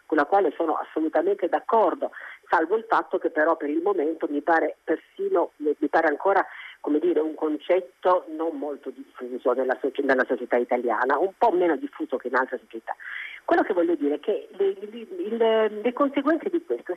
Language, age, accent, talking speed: Italian, 40-59, native, 175 wpm